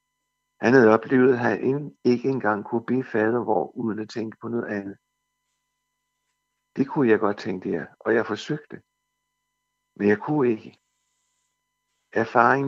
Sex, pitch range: male, 115-145 Hz